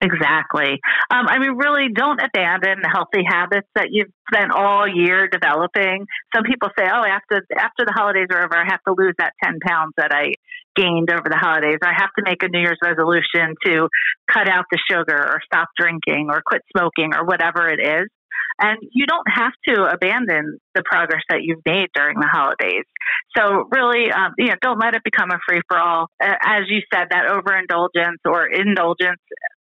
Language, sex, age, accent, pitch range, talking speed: English, female, 30-49, American, 165-205 Hz, 195 wpm